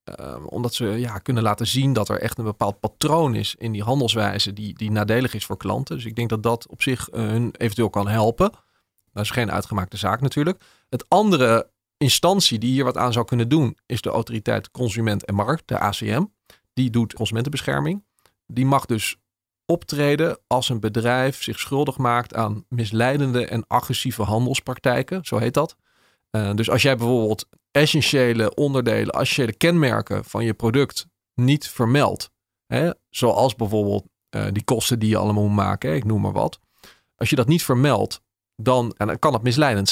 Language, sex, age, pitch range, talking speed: Dutch, male, 40-59, 110-140 Hz, 175 wpm